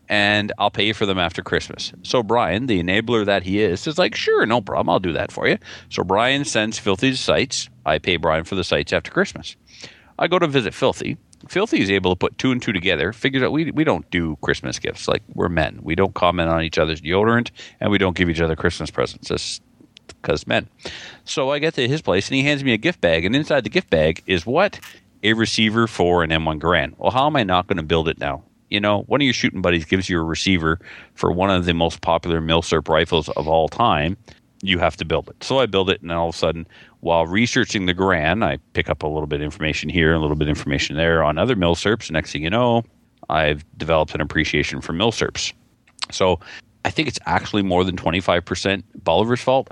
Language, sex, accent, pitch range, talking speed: English, male, American, 80-110 Hz, 235 wpm